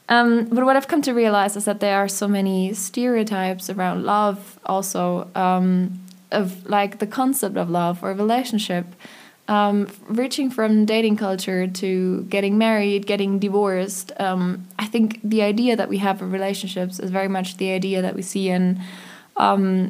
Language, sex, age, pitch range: English, female, 20-39, 190-215 Hz